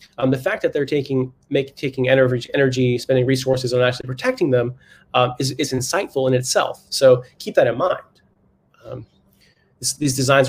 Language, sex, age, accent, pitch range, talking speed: English, male, 30-49, American, 125-135 Hz, 170 wpm